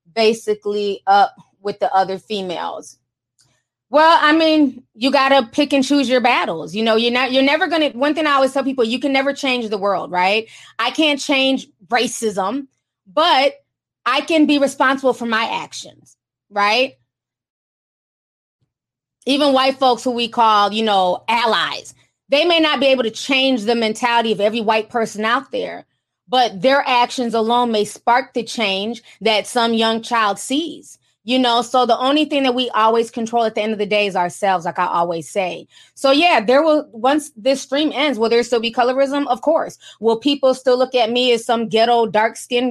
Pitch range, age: 215-270 Hz, 20-39